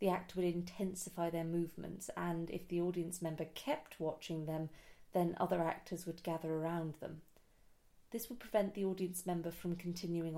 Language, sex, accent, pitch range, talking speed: English, female, British, 170-200 Hz, 170 wpm